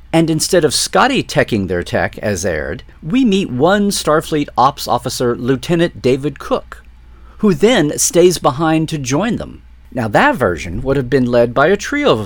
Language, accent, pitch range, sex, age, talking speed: English, American, 100-155 Hz, male, 50-69, 175 wpm